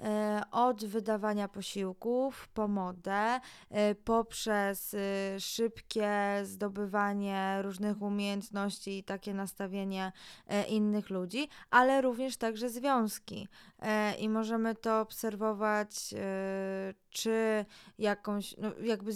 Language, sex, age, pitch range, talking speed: Polish, female, 20-39, 195-220 Hz, 85 wpm